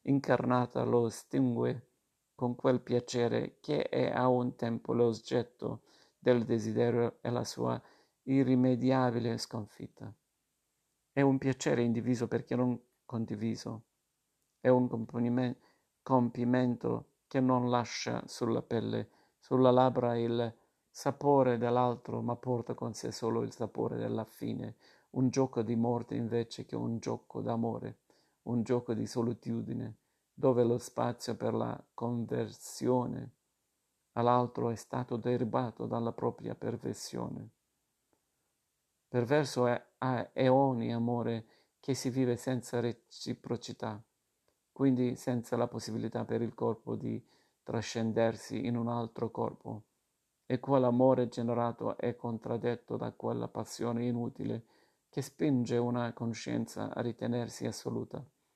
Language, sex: Italian, male